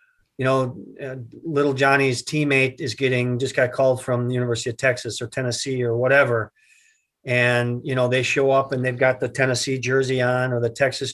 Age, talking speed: 40-59, 190 wpm